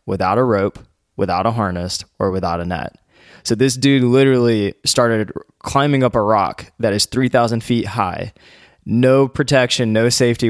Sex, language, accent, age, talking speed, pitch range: male, English, American, 20-39, 160 wpm, 110-130 Hz